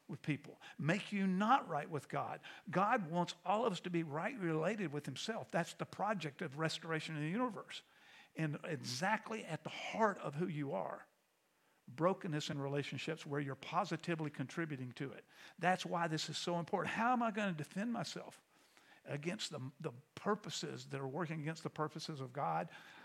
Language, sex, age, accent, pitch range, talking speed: English, male, 50-69, American, 150-185 Hz, 180 wpm